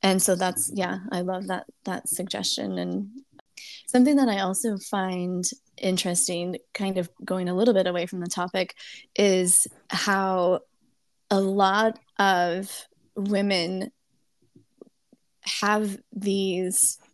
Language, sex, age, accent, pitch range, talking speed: English, female, 20-39, American, 185-215 Hz, 120 wpm